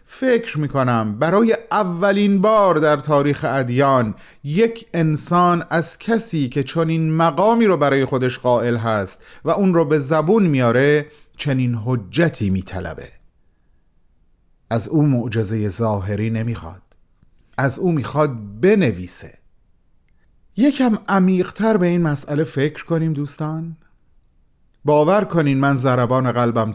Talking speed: 115 wpm